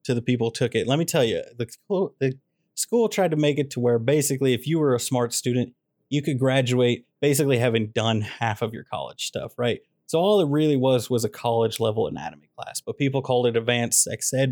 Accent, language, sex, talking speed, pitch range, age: American, English, male, 225 wpm, 120-135 Hz, 30-49